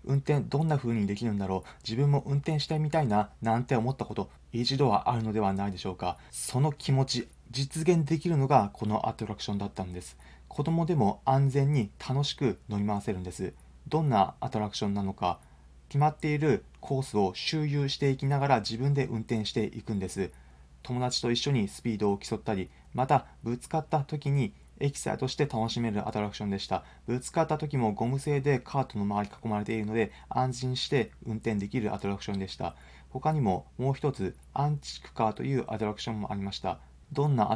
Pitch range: 100-140 Hz